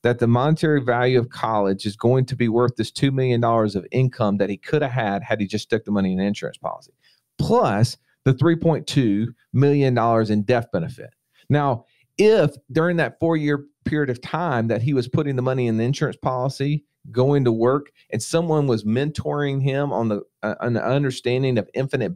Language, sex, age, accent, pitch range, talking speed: English, male, 40-59, American, 115-145 Hz, 190 wpm